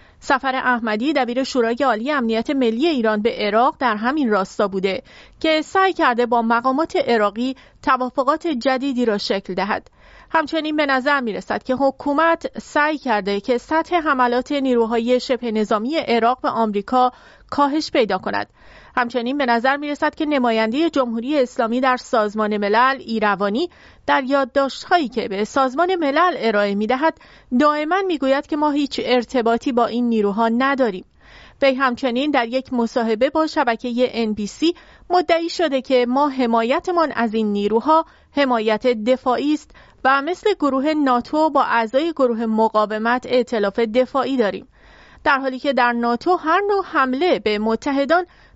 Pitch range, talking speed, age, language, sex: 230-295 Hz, 145 wpm, 40-59, English, female